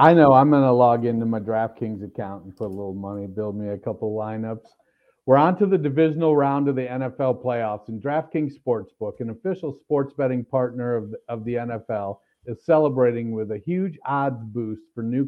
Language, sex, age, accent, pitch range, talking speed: English, male, 50-69, American, 115-165 Hz, 210 wpm